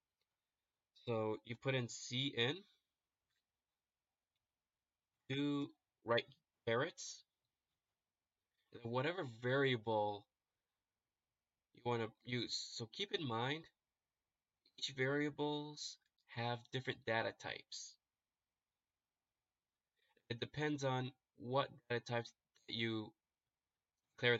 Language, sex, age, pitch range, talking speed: English, male, 20-39, 115-130 Hz, 75 wpm